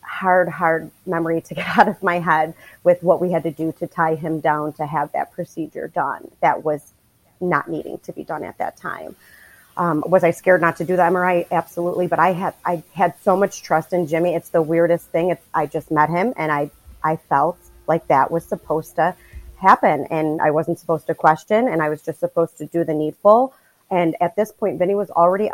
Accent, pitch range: American, 160-180 Hz